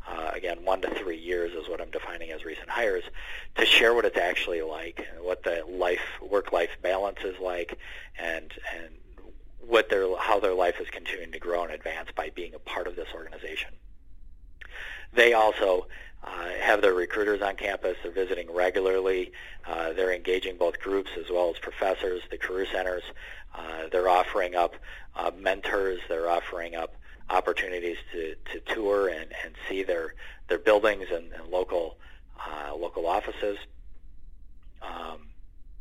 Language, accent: English, American